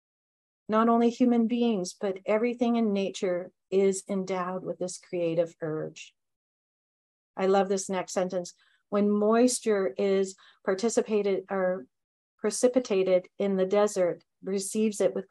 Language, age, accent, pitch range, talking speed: English, 40-59, American, 180-220 Hz, 120 wpm